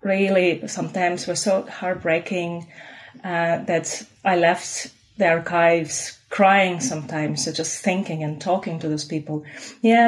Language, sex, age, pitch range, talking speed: English, female, 30-49, 170-210 Hz, 130 wpm